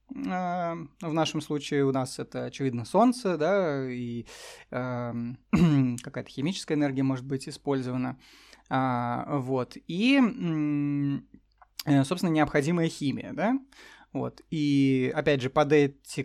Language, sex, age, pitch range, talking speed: Russian, male, 20-39, 135-165 Hz, 105 wpm